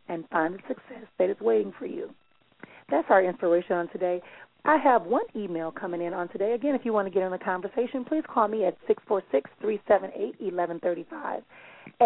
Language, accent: English, American